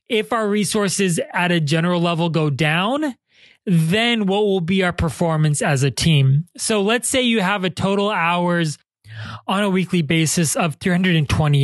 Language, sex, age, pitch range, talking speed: English, male, 20-39, 145-185 Hz, 165 wpm